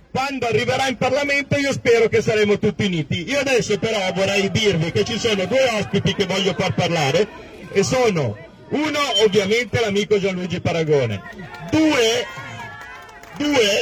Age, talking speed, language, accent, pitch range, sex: 50-69, 145 wpm, Italian, native, 185-255 Hz, male